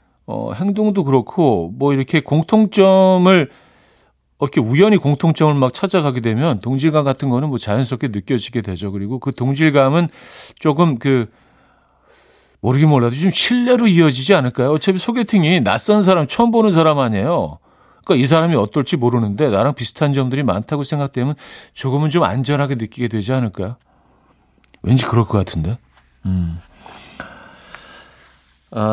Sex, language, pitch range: male, Korean, 110-160 Hz